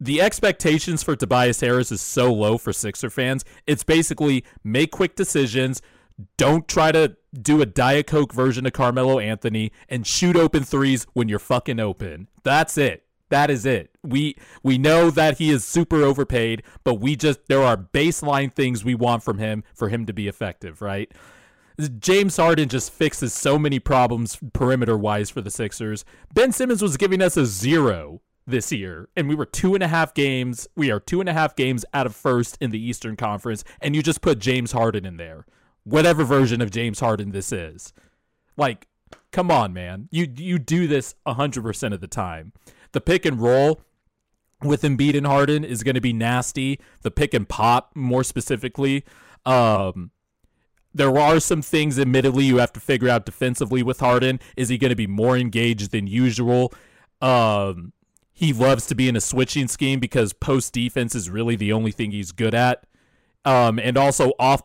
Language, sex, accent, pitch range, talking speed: English, male, American, 110-140 Hz, 190 wpm